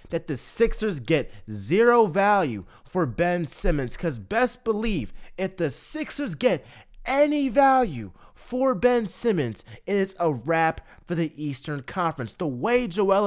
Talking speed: 145 wpm